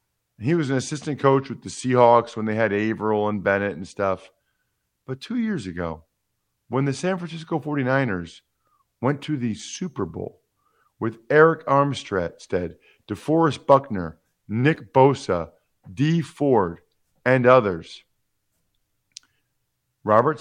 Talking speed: 125 wpm